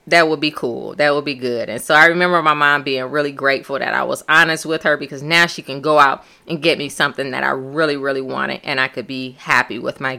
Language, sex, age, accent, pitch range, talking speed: English, female, 30-49, American, 145-190 Hz, 265 wpm